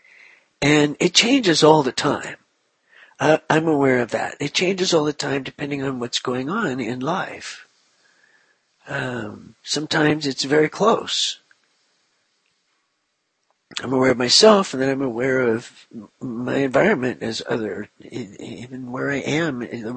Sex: male